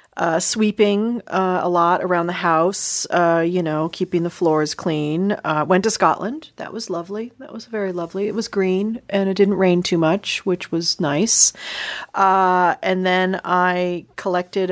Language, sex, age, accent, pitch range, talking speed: English, female, 40-59, American, 160-210 Hz, 175 wpm